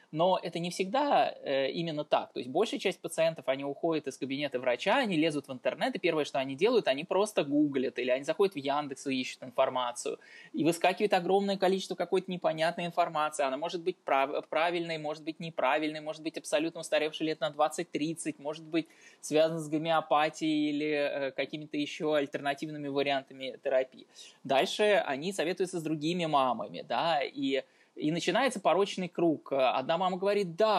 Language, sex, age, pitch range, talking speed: Russian, male, 20-39, 155-200 Hz, 170 wpm